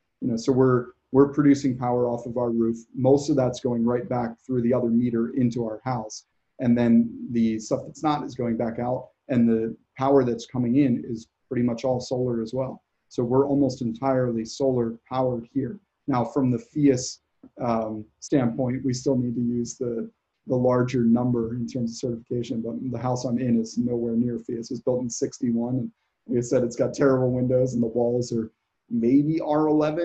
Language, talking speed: English, 195 wpm